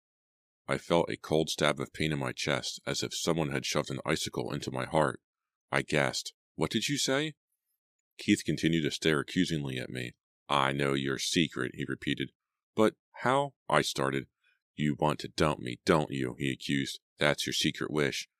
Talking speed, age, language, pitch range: 185 wpm, 40-59, English, 70-80 Hz